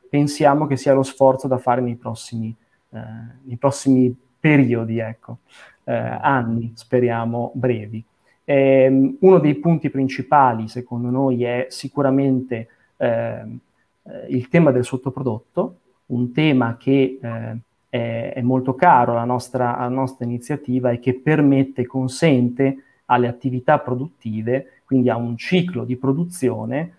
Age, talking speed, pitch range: 30-49, 130 wpm, 120-145 Hz